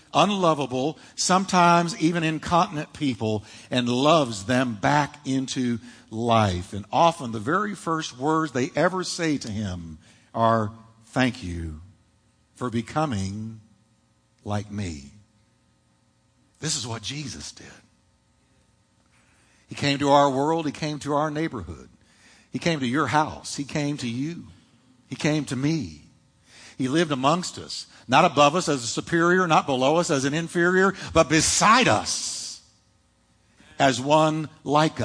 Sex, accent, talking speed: male, American, 135 wpm